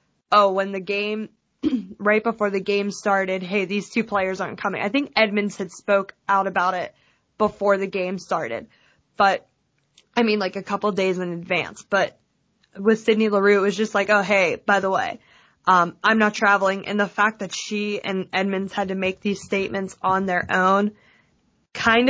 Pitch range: 190-215 Hz